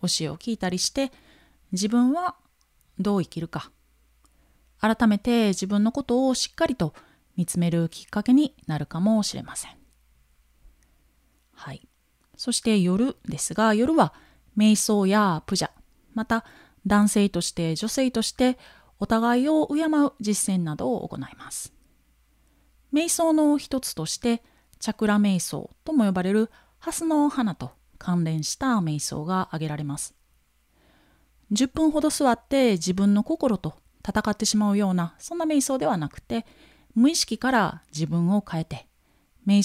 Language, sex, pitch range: Japanese, female, 165-245 Hz